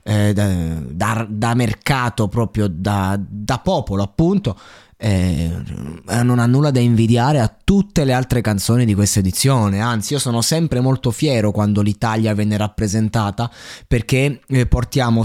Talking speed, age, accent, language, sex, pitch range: 140 wpm, 20-39, native, Italian, male, 110-145 Hz